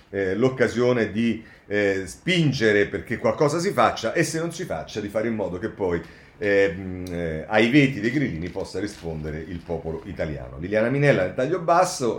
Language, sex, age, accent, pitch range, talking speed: Italian, male, 40-59, native, 105-140 Hz, 175 wpm